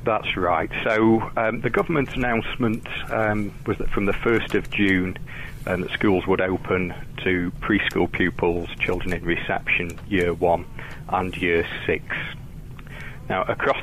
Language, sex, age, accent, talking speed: English, male, 40-59, British, 145 wpm